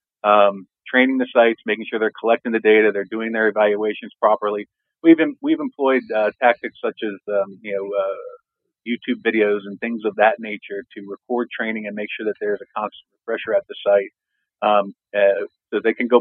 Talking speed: 200 wpm